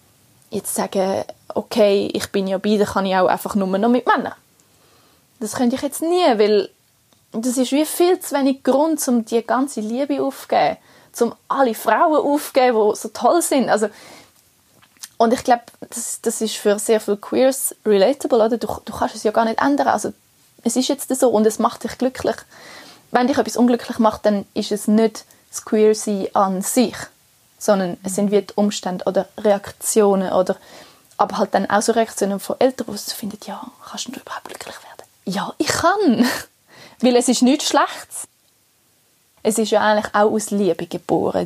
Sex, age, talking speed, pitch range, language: female, 20-39, 185 wpm, 200-245 Hz, German